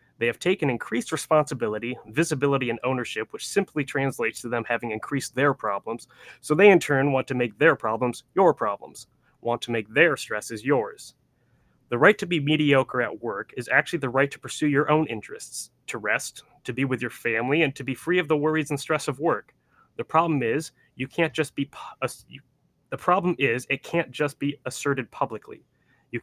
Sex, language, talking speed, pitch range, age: male, English, 195 wpm, 125-155 Hz, 30-49